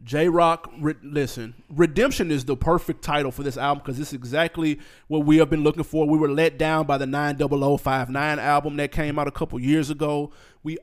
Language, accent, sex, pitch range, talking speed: English, American, male, 145-165 Hz, 195 wpm